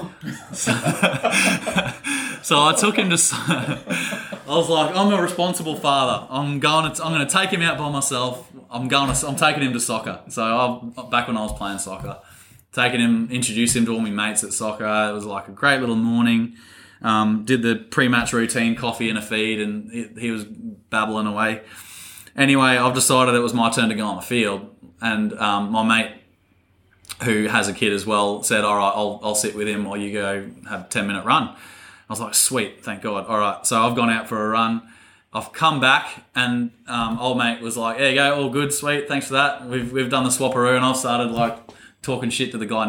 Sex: male